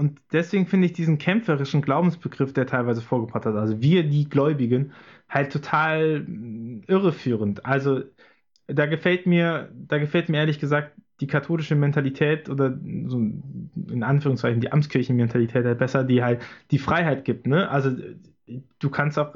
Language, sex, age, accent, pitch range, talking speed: German, male, 20-39, German, 130-160 Hz, 150 wpm